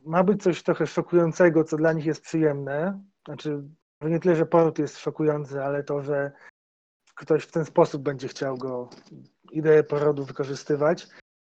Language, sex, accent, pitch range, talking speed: Polish, male, native, 150-180 Hz, 155 wpm